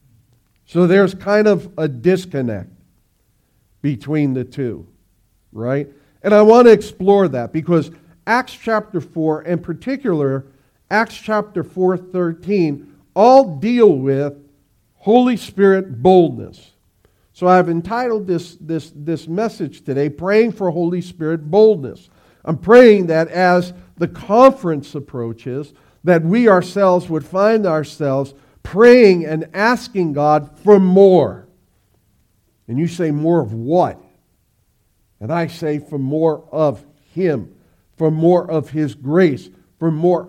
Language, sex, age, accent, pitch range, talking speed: English, male, 50-69, American, 140-195 Hz, 125 wpm